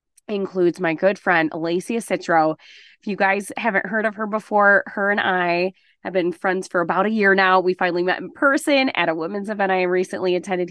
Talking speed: 205 wpm